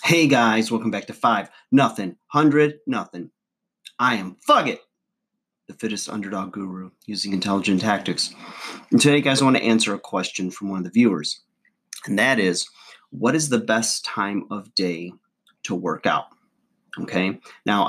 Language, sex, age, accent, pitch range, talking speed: English, male, 30-49, American, 95-120 Hz, 165 wpm